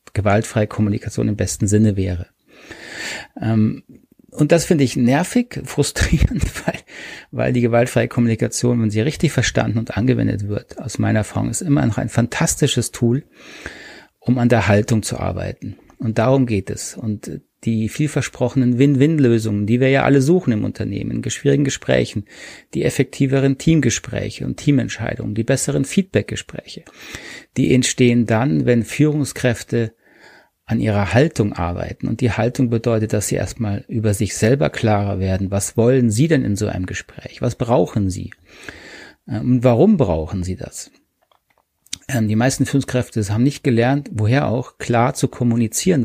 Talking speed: 145 wpm